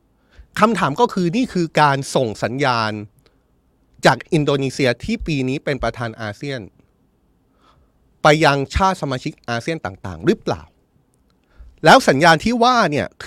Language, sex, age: Thai, male, 30-49